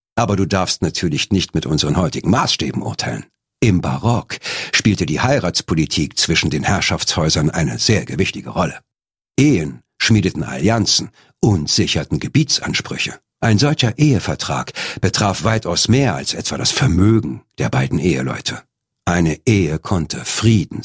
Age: 60-79